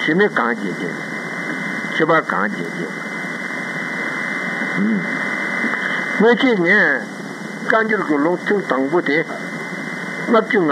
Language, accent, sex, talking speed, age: Italian, Indian, male, 85 wpm, 60-79